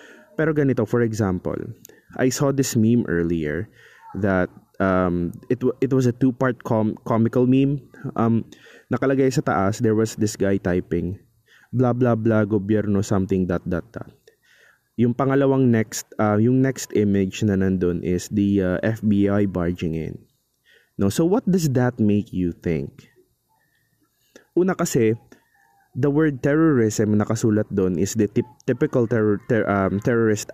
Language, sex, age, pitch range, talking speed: Filipino, male, 20-39, 100-130 Hz, 145 wpm